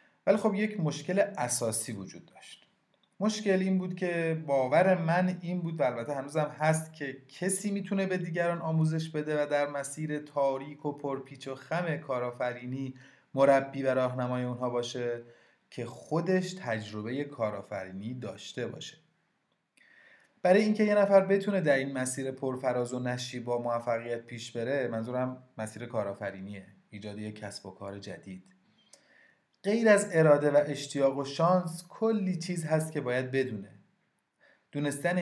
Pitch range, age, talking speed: 125-165 Hz, 30-49, 150 wpm